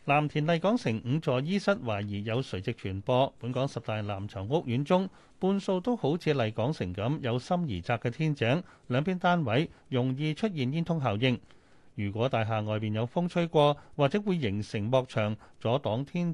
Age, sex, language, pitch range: 30-49, male, Chinese, 115-165 Hz